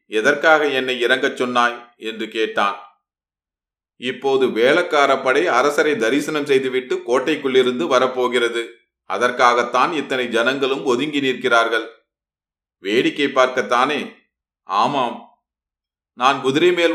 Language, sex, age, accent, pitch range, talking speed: Tamil, male, 30-49, native, 125-160 Hz, 85 wpm